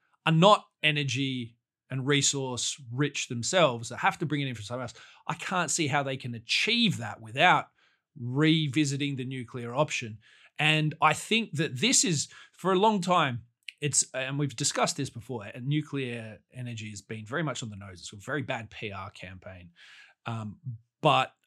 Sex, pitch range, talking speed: male, 115-150 Hz, 175 wpm